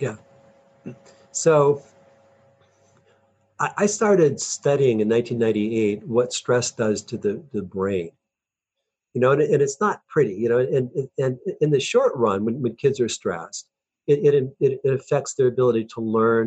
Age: 50-69